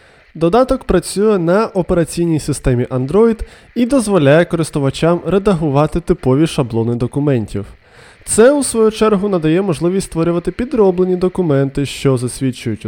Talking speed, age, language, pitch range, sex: 110 wpm, 20-39, Ukrainian, 135-195 Hz, male